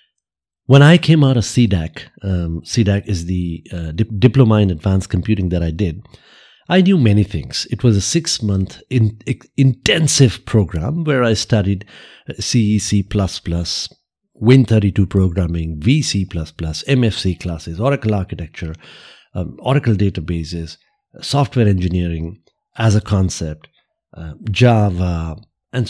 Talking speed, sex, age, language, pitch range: 115 wpm, male, 50-69, English, 95-125 Hz